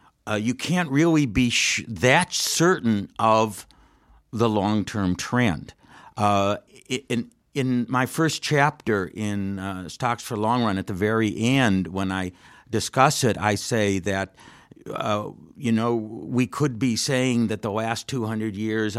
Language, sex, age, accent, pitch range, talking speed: English, male, 50-69, American, 100-125 Hz, 150 wpm